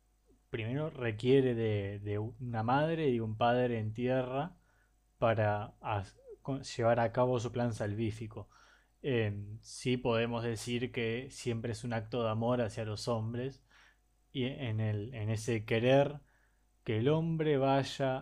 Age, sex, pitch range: 20-39, male, 115-140 Hz